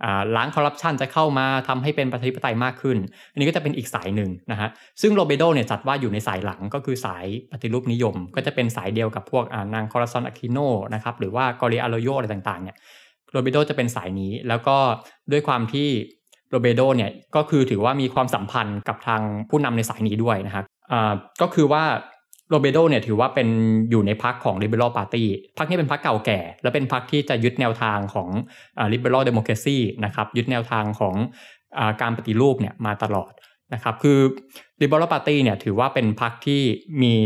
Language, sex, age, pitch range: Thai, male, 20-39, 110-135 Hz